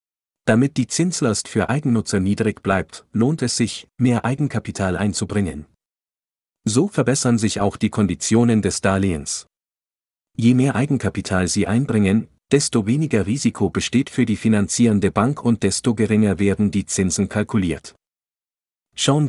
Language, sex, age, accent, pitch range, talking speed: German, male, 40-59, German, 95-120 Hz, 130 wpm